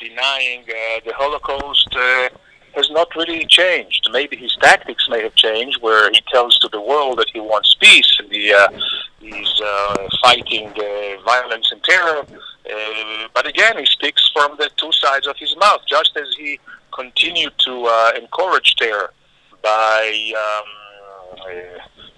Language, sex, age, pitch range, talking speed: English, male, 40-59, 110-140 Hz, 150 wpm